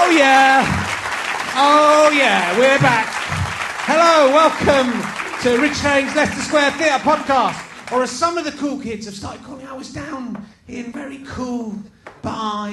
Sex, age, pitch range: male, 30-49, 195-255 Hz